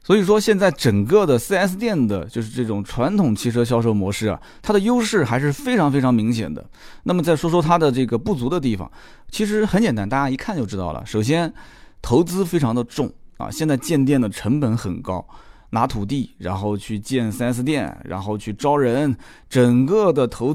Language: Chinese